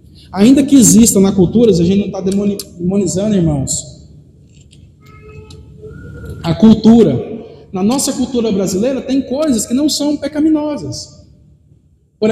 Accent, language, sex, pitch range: Brazilian, Portuguese, male, 195-250 Hz